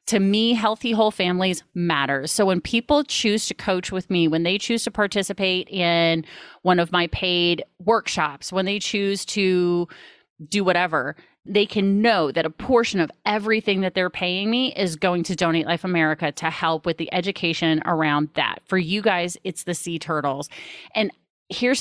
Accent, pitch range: American, 165-210 Hz